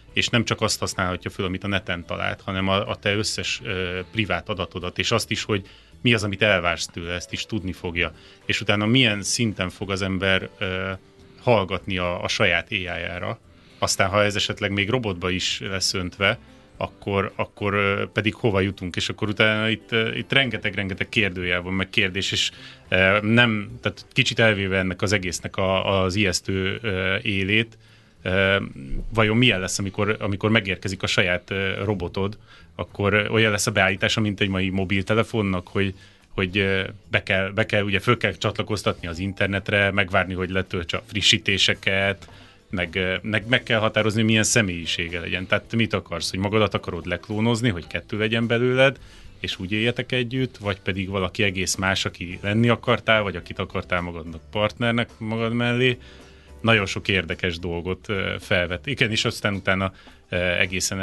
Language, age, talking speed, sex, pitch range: Hungarian, 30-49, 155 wpm, male, 95-110 Hz